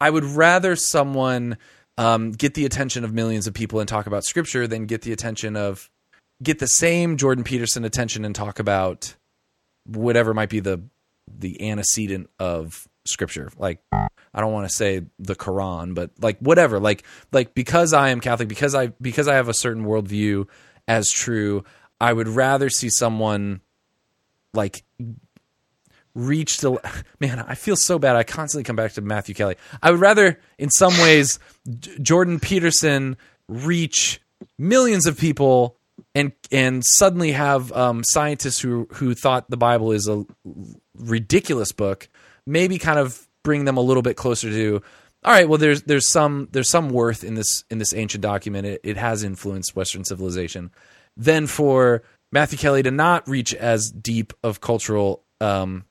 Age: 20-39